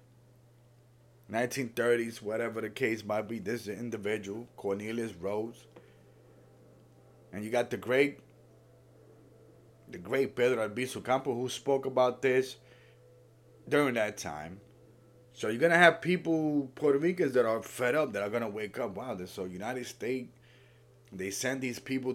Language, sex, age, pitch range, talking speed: English, male, 30-49, 110-125 Hz, 155 wpm